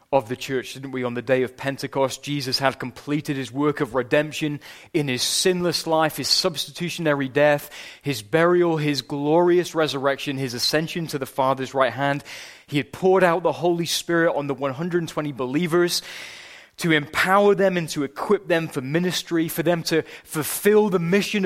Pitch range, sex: 145-180 Hz, male